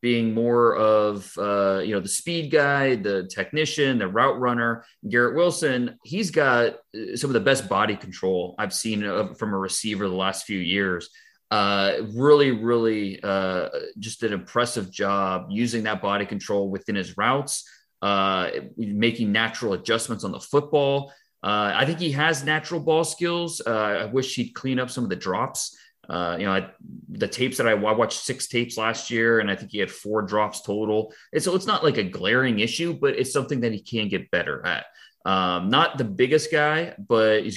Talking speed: 190 wpm